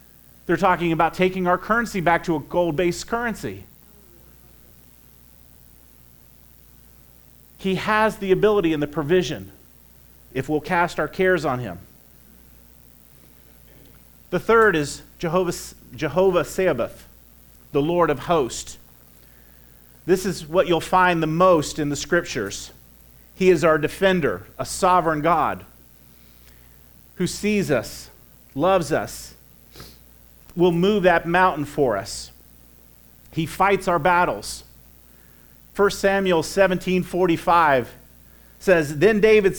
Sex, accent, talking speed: male, American, 110 wpm